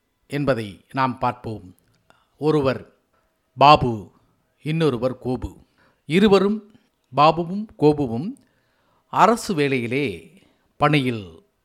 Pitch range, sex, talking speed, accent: 120-180 Hz, female, 65 wpm, native